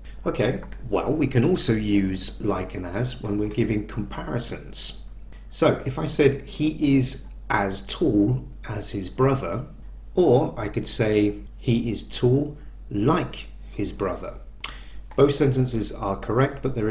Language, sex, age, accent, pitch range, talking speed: English, male, 40-59, British, 100-125 Hz, 140 wpm